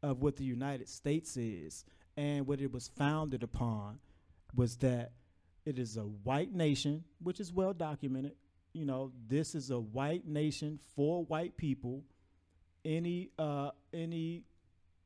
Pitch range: 100-145 Hz